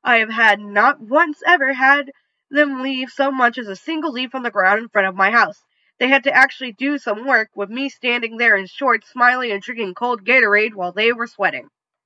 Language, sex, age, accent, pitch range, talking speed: English, female, 10-29, American, 200-270 Hz, 225 wpm